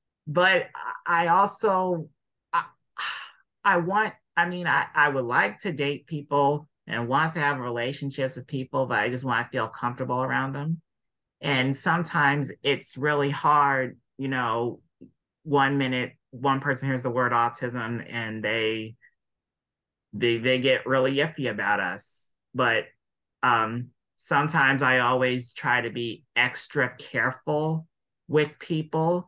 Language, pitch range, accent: English, 125-155 Hz, American